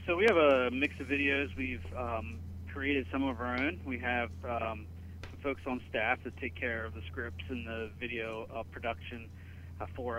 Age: 20-39